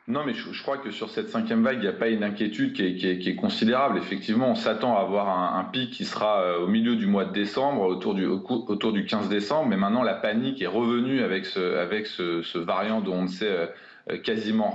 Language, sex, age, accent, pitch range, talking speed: French, male, 30-49, French, 105-145 Hz, 250 wpm